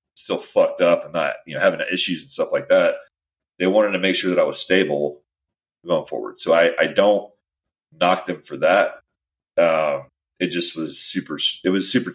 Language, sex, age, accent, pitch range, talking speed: English, male, 30-49, American, 75-100 Hz, 200 wpm